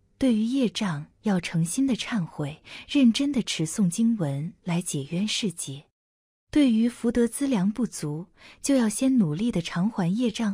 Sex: female